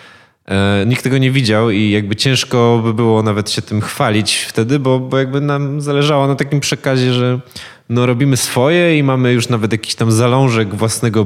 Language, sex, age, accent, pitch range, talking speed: Polish, male, 20-39, native, 110-130 Hz, 180 wpm